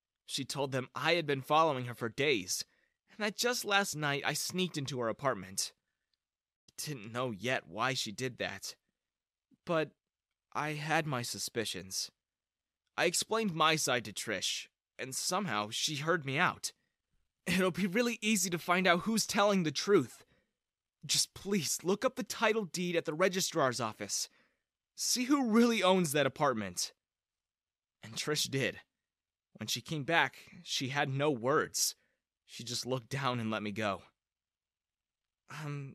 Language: English